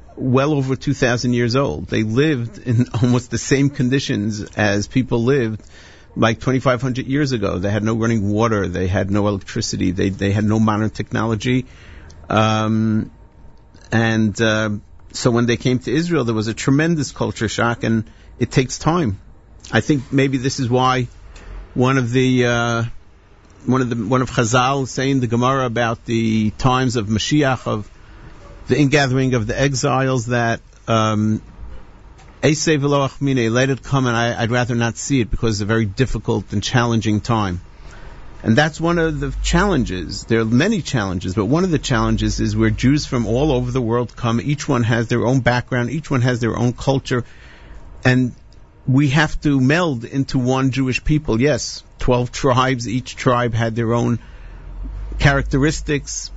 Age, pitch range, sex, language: 50-69, 110-130 Hz, male, English